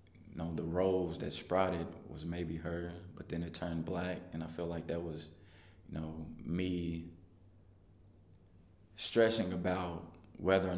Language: English